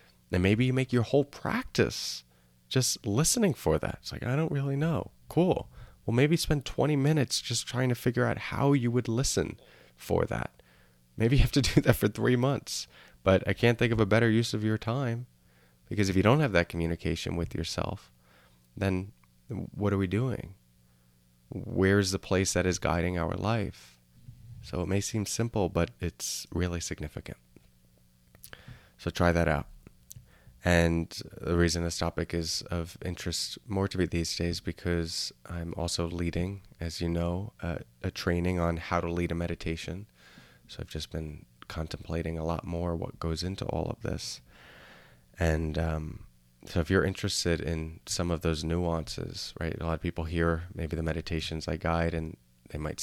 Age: 20-39